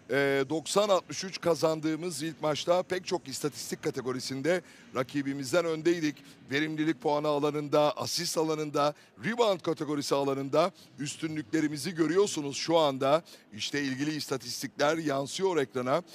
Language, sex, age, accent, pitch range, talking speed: Turkish, male, 60-79, native, 140-175 Hz, 105 wpm